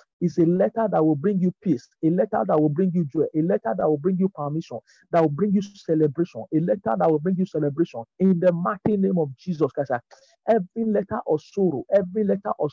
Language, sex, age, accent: English, male, 50-69, Nigerian